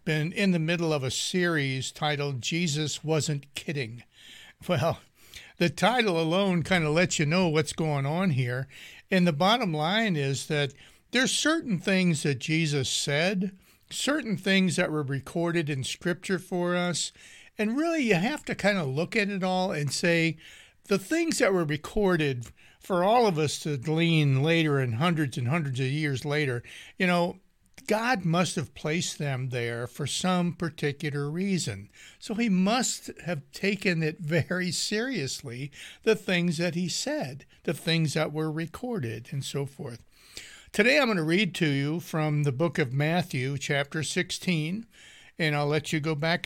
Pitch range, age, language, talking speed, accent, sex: 145-185 Hz, 60-79, English, 170 wpm, American, male